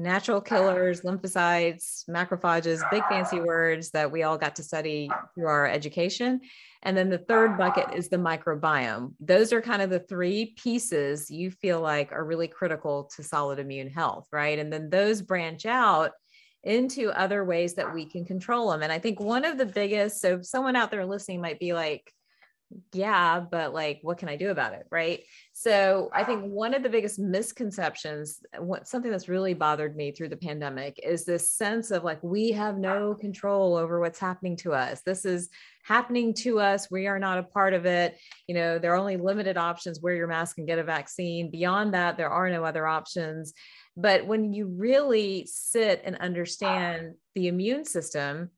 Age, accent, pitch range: 30-49, American, 165-205 Hz